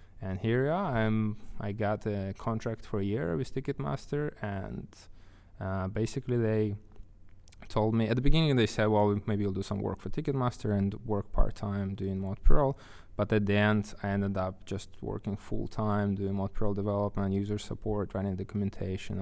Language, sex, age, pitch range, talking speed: English, male, 20-39, 95-110 Hz, 170 wpm